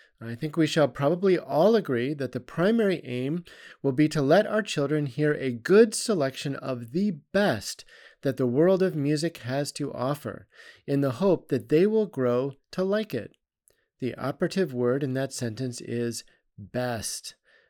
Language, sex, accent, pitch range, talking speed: English, male, American, 120-150 Hz, 170 wpm